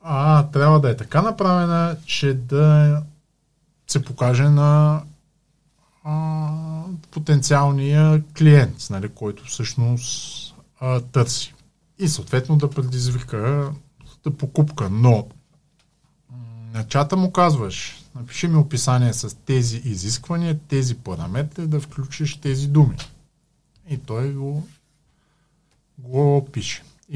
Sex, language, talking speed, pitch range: male, Bulgarian, 105 wpm, 120-150 Hz